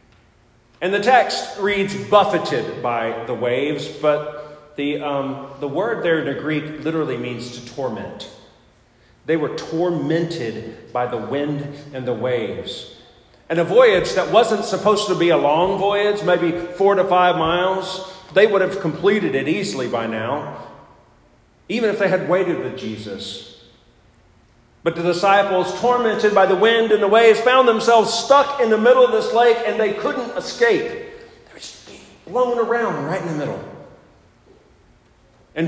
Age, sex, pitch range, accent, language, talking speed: 40-59, male, 130-195 Hz, American, English, 160 wpm